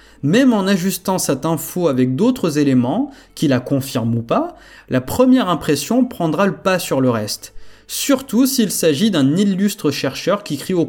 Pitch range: 135-220 Hz